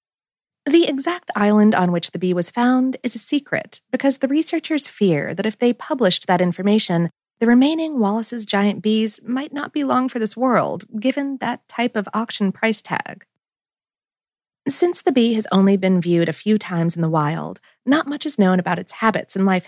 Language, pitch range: English, 190-260 Hz